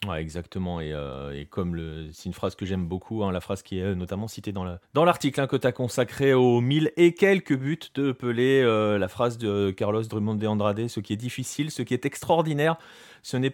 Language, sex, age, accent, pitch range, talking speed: French, male, 30-49, French, 115-155 Hz, 245 wpm